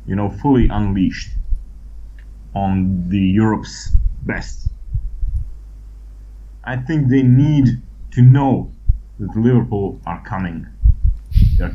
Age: 30-49